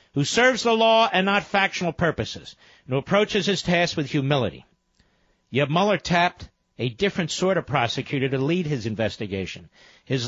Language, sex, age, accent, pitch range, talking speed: English, male, 50-69, American, 150-215 Hz, 165 wpm